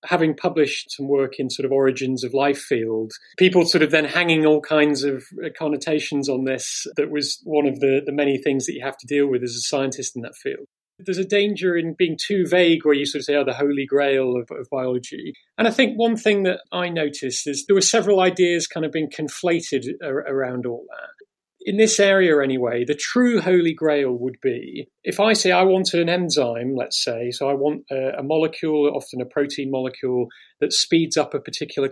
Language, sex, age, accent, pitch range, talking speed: English, male, 40-59, British, 140-180 Hz, 215 wpm